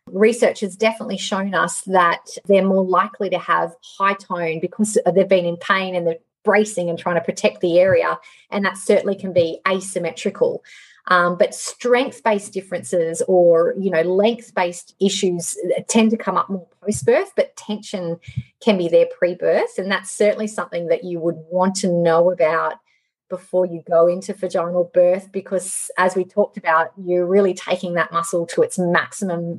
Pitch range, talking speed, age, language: 180-220 Hz, 170 wpm, 30-49, English